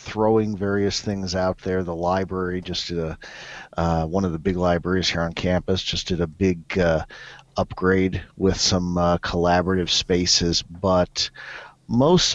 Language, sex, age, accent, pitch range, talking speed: English, male, 40-59, American, 85-100 Hz, 155 wpm